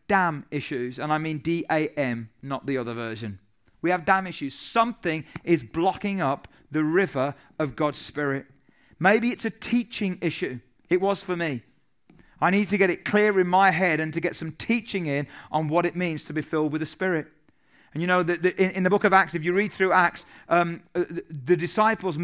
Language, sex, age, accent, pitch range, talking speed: English, male, 40-59, British, 155-200 Hz, 205 wpm